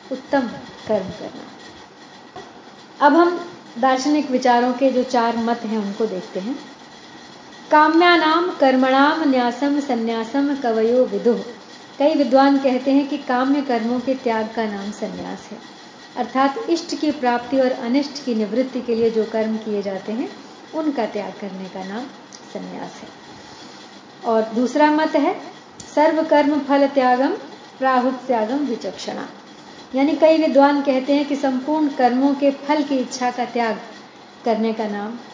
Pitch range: 240-290 Hz